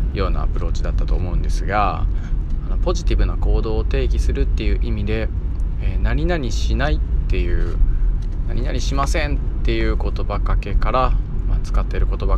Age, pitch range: 20-39, 75-105 Hz